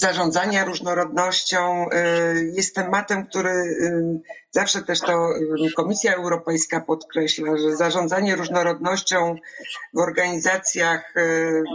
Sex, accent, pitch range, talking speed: female, native, 165-190 Hz, 80 wpm